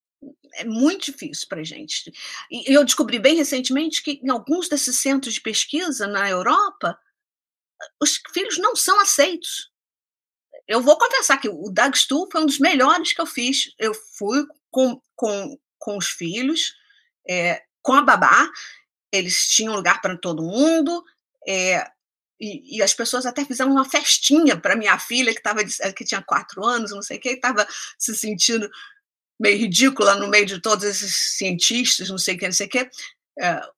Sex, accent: female, Brazilian